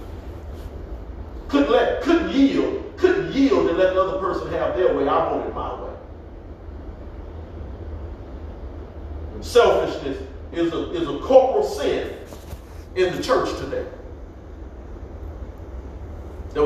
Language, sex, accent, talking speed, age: English, male, American, 110 wpm, 40-59